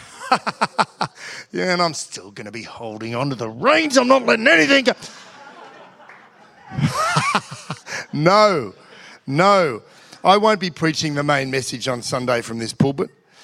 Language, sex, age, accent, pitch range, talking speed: English, male, 50-69, Australian, 135-170 Hz, 140 wpm